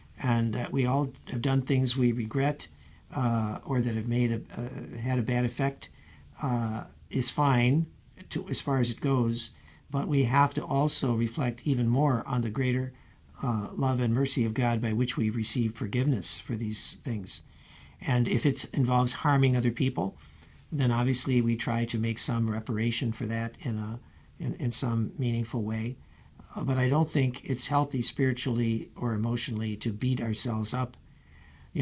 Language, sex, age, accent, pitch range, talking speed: English, male, 60-79, American, 115-135 Hz, 175 wpm